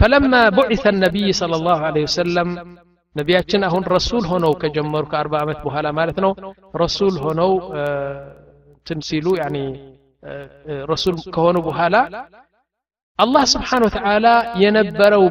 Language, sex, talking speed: Amharic, male, 105 wpm